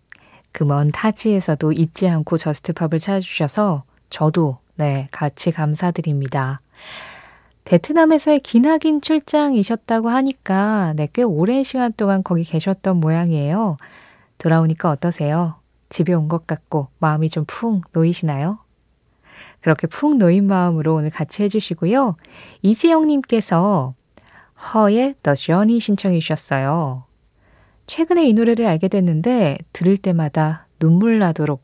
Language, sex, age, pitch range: Korean, female, 20-39, 155-210 Hz